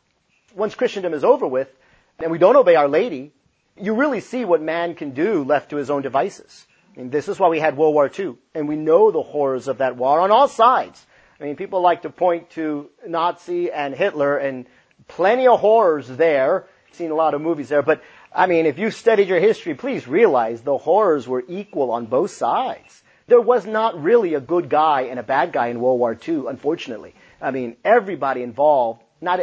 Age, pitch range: 40-59, 145-225 Hz